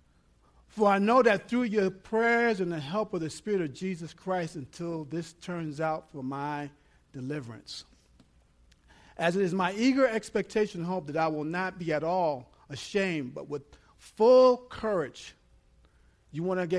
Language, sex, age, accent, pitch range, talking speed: English, male, 50-69, American, 150-230 Hz, 170 wpm